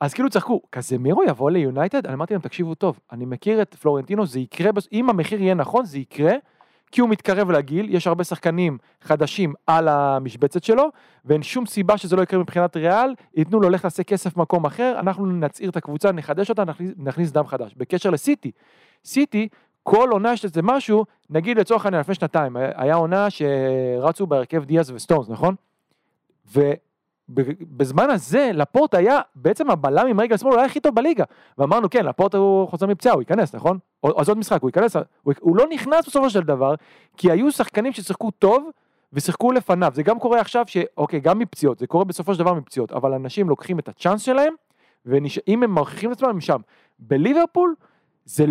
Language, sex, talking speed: Hebrew, male, 180 wpm